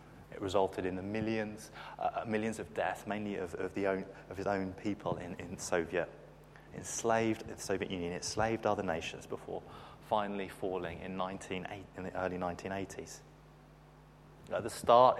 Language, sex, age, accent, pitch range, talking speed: English, male, 30-49, British, 85-105 Hz, 160 wpm